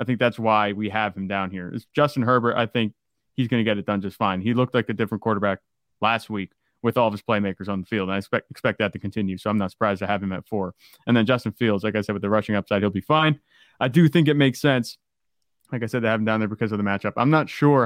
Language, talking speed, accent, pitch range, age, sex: English, 300 wpm, American, 105-130 Hz, 20-39, male